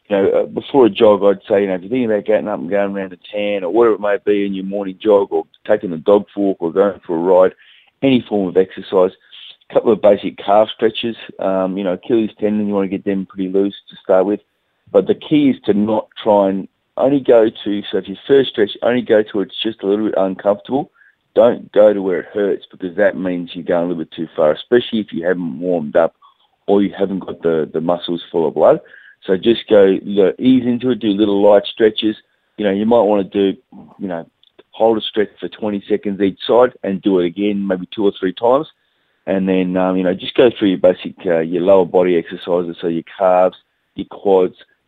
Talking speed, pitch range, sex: 240 wpm, 95-105 Hz, male